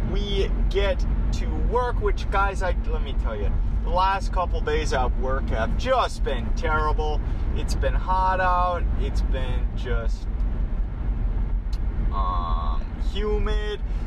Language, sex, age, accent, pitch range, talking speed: English, male, 20-39, American, 85-115 Hz, 130 wpm